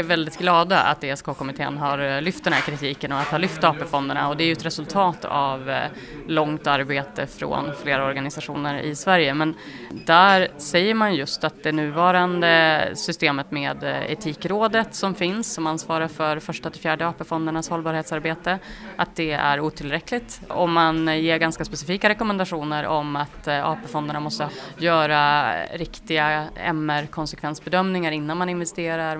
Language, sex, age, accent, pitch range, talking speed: Swedish, female, 30-49, native, 145-170 Hz, 145 wpm